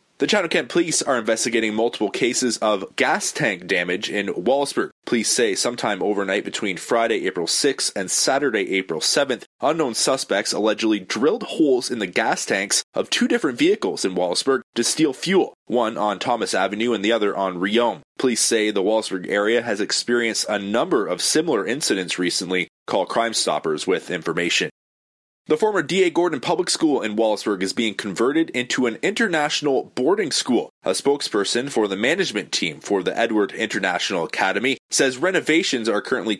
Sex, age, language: male, 20-39, English